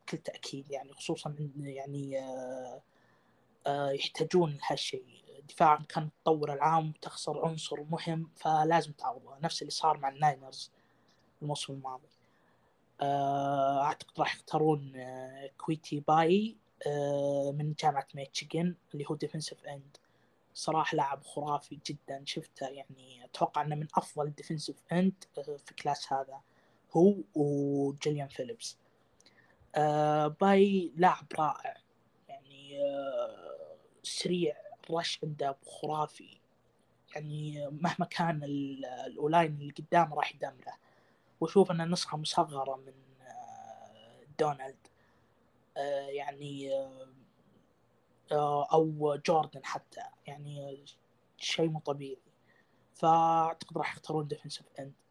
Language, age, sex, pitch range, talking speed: Arabic, 20-39, female, 140-165 Hz, 95 wpm